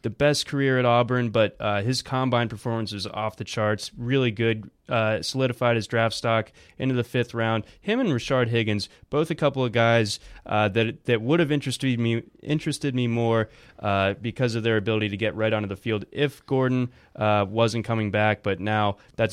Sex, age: male, 20-39